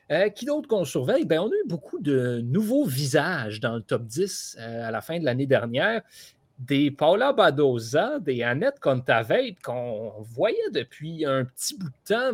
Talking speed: 185 wpm